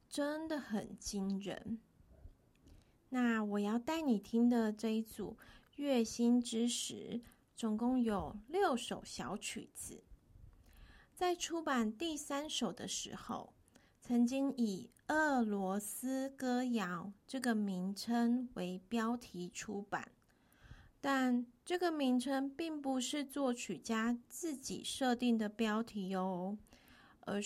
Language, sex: Chinese, female